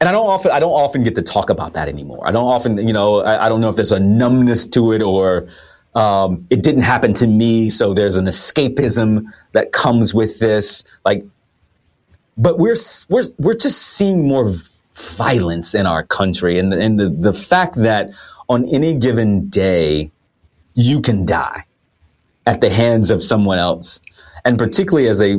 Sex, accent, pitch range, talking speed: male, American, 95-125 Hz, 185 wpm